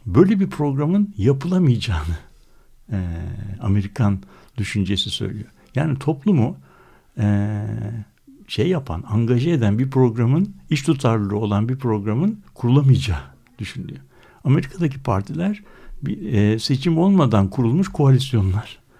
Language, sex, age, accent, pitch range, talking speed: Turkish, male, 60-79, native, 105-155 Hz, 100 wpm